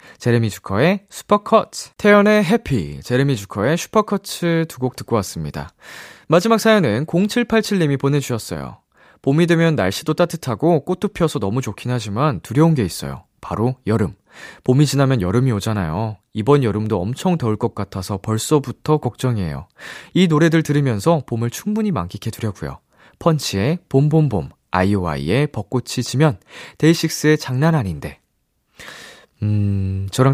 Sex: male